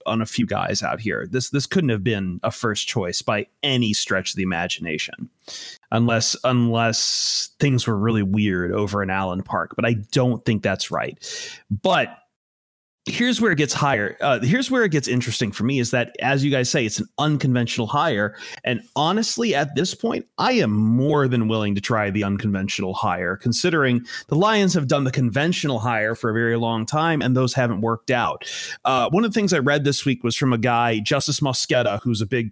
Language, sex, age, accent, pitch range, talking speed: English, male, 30-49, American, 110-145 Hz, 205 wpm